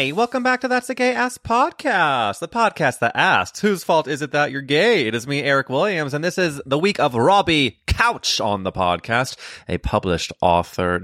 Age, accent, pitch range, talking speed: 20-39, American, 90-140 Hz, 205 wpm